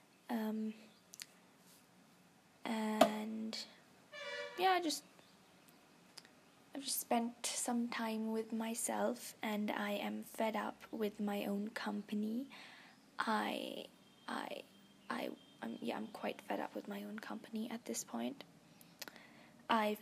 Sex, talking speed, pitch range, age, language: female, 115 wpm, 215-245 Hz, 10-29, English